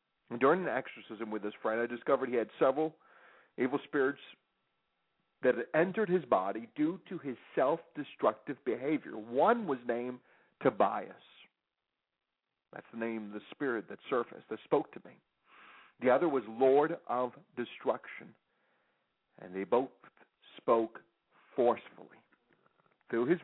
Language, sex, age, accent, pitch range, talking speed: English, male, 50-69, American, 120-185 Hz, 135 wpm